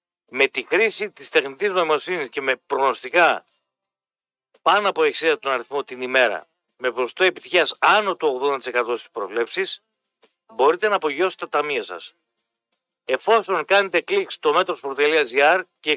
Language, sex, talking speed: Greek, male, 130 wpm